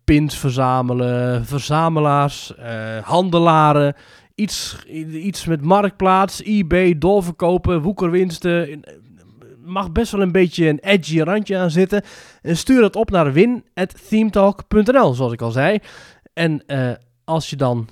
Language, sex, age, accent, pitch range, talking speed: Dutch, male, 20-39, Dutch, 135-195 Hz, 125 wpm